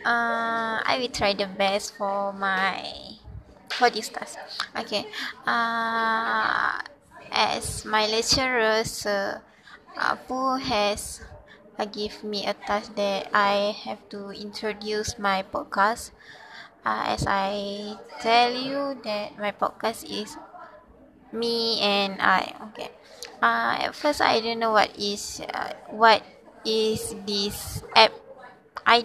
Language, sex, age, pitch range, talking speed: English, female, 20-39, 210-245 Hz, 120 wpm